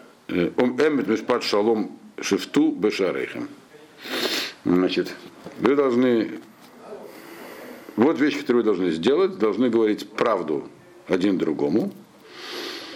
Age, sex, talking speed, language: 60-79, male, 65 wpm, Russian